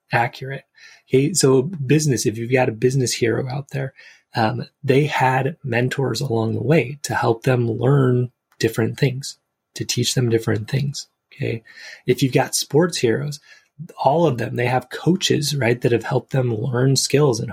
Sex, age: male, 20-39